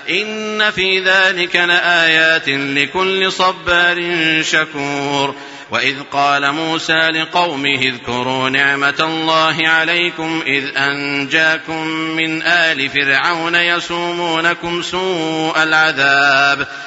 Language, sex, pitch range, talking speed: Arabic, male, 140-175 Hz, 80 wpm